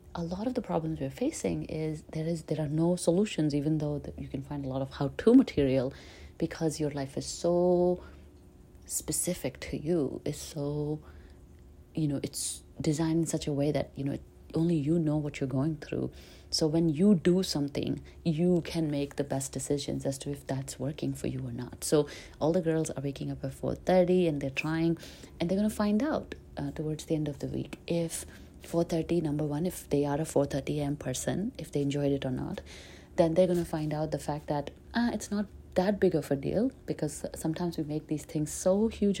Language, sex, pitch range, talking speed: English, female, 135-170 Hz, 215 wpm